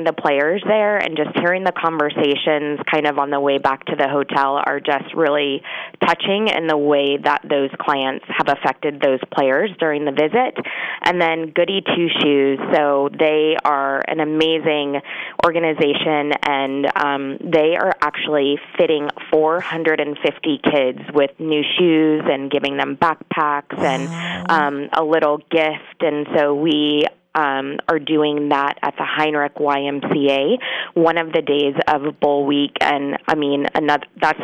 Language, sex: English, female